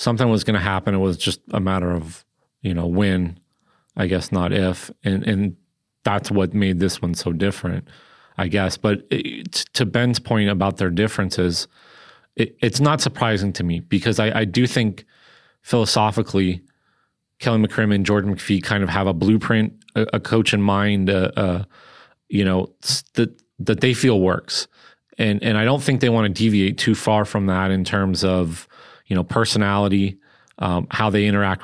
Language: English